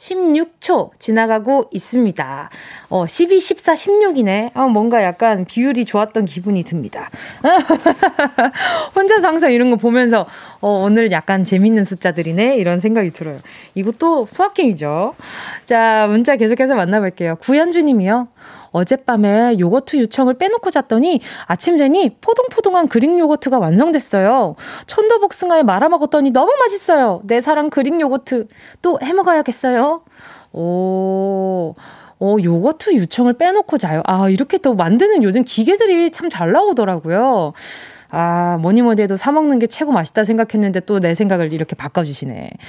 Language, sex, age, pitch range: Korean, female, 20-39, 190-310 Hz